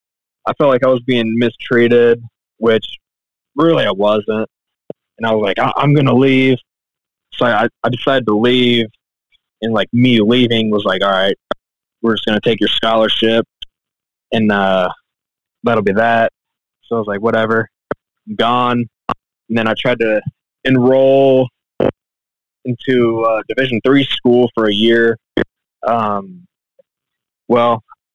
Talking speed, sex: 145 wpm, male